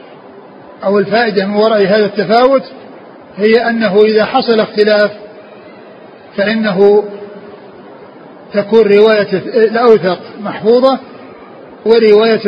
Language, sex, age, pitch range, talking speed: Arabic, male, 50-69, 200-220 Hz, 80 wpm